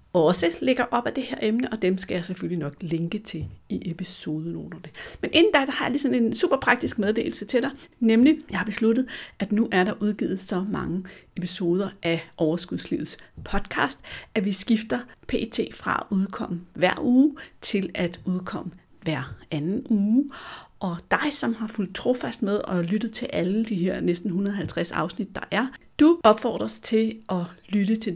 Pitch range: 175-220 Hz